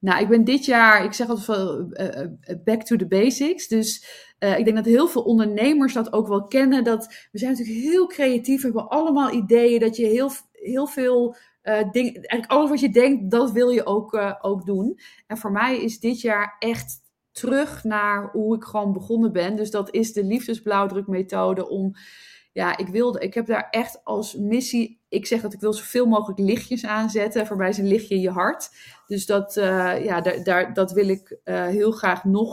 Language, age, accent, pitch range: Dutch, 20-39, Dutch, 190-230 Hz